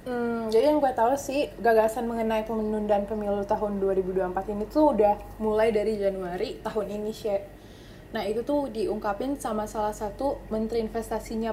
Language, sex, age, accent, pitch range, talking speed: Indonesian, female, 20-39, native, 215-260 Hz, 160 wpm